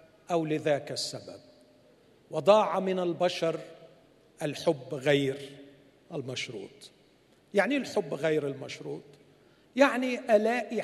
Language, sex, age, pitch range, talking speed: Arabic, male, 50-69, 150-220 Hz, 85 wpm